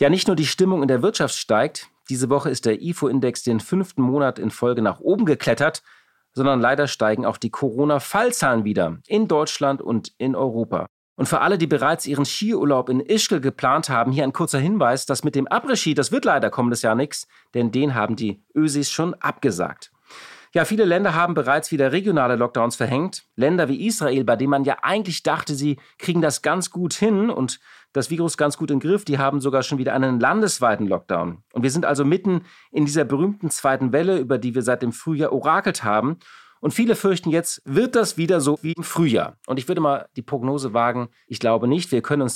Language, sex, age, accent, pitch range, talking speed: German, male, 40-59, German, 120-165 Hz, 210 wpm